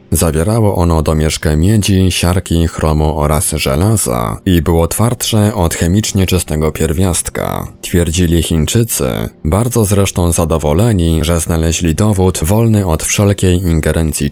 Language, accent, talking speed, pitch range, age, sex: Polish, native, 115 wpm, 80-105 Hz, 20-39, male